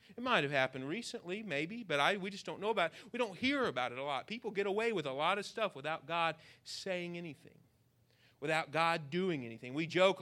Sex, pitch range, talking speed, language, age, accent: male, 125-190 Hz, 230 wpm, English, 40-59, American